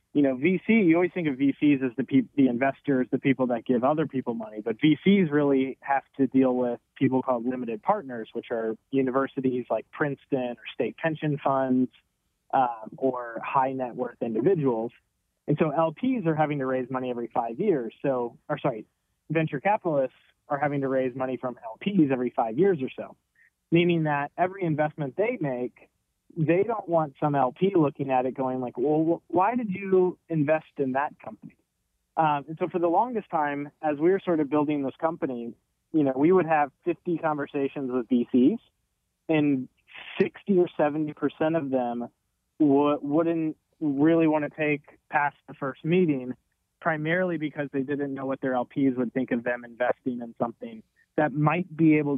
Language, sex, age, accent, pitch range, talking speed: English, male, 20-39, American, 130-160 Hz, 180 wpm